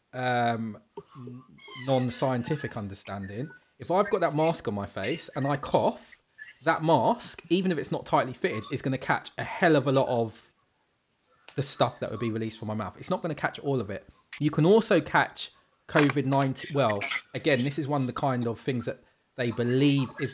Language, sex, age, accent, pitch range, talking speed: English, male, 20-39, British, 120-150 Hz, 205 wpm